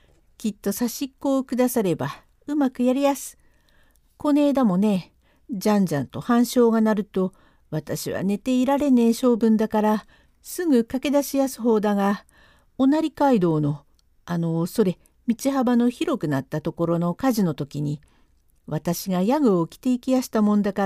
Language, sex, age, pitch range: Japanese, female, 50-69, 190-265 Hz